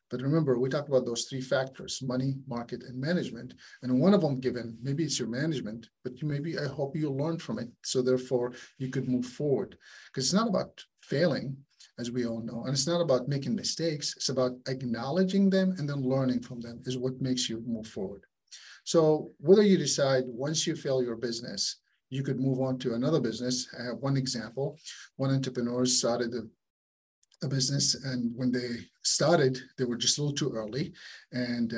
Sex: male